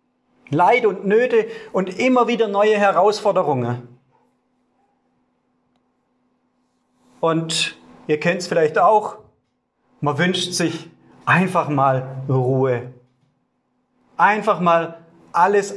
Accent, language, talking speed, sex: German, German, 90 wpm, male